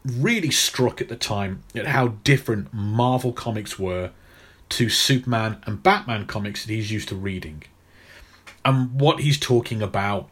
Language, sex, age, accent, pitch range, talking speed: English, male, 30-49, British, 100-130 Hz, 150 wpm